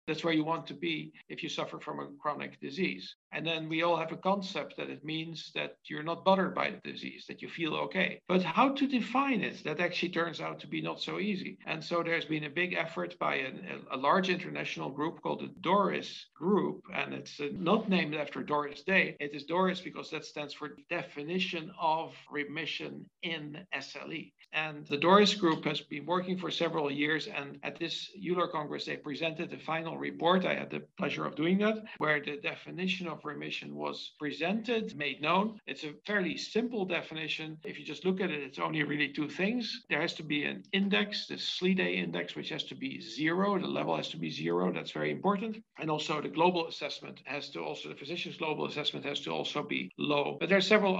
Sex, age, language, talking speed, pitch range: male, 60-79, English, 210 wpm, 150-185 Hz